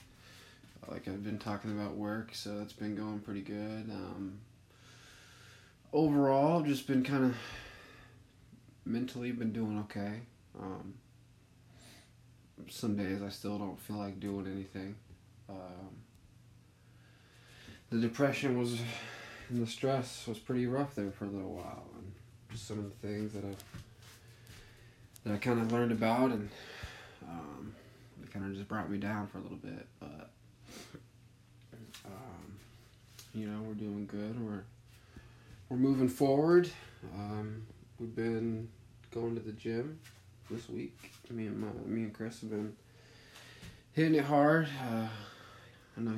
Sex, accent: male, American